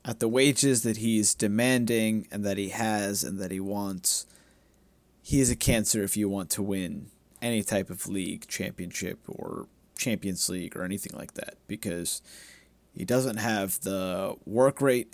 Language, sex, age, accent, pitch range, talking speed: English, male, 30-49, American, 105-130 Hz, 165 wpm